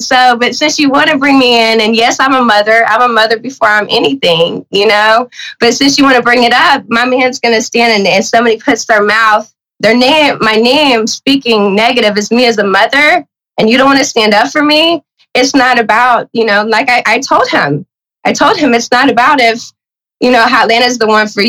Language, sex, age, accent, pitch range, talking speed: English, female, 20-39, American, 205-250 Hz, 225 wpm